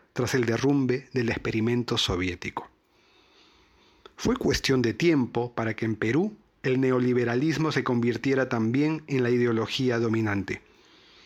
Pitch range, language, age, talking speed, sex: 120-150 Hz, Spanish, 40-59, 125 wpm, male